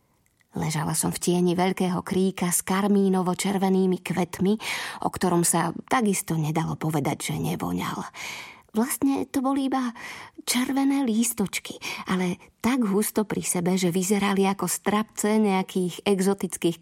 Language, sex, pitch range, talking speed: Slovak, female, 175-215 Hz, 120 wpm